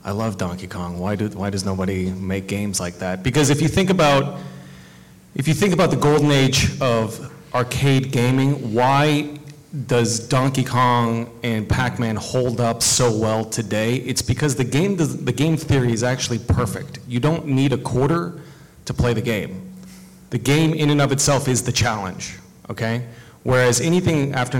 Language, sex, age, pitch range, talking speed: English, male, 30-49, 105-140 Hz, 175 wpm